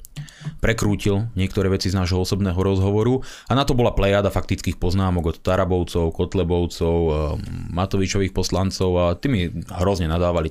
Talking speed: 130 wpm